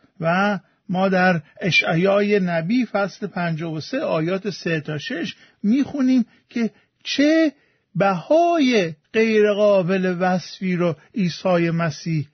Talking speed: 110 wpm